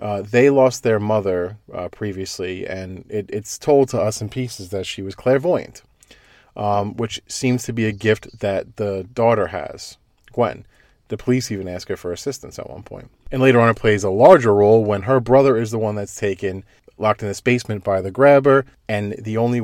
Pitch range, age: 105-130 Hz, 40-59